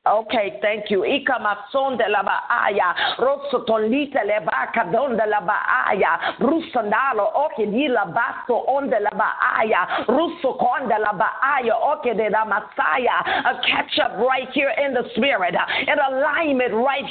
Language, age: English, 50-69